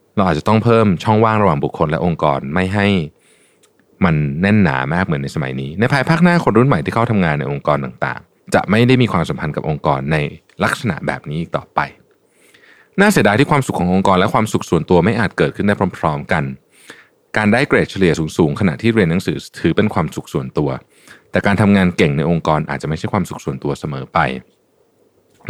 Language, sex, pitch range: Thai, male, 85-115 Hz